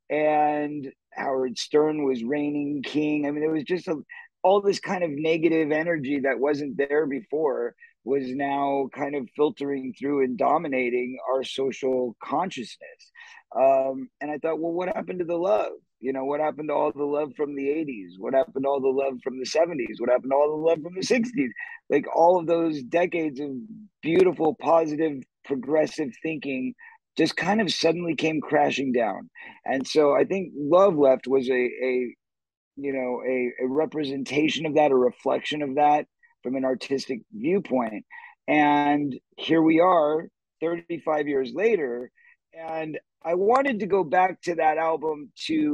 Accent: American